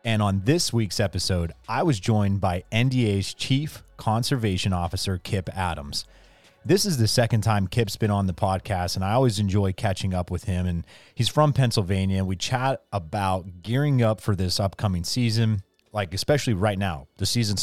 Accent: American